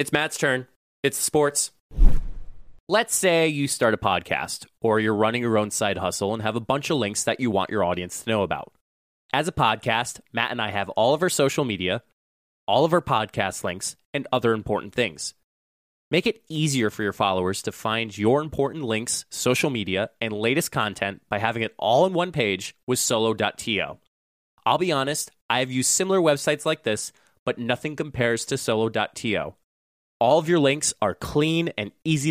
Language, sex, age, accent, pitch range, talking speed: English, male, 20-39, American, 105-150 Hz, 190 wpm